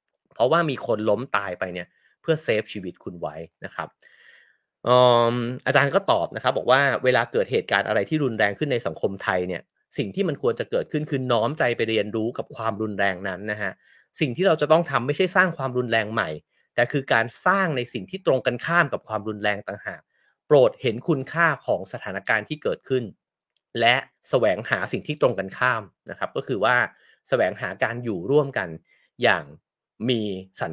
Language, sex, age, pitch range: English, male, 30-49, 105-170 Hz